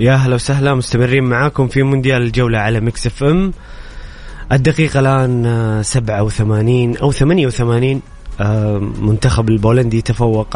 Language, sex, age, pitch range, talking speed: Arabic, male, 20-39, 115-140 Hz, 115 wpm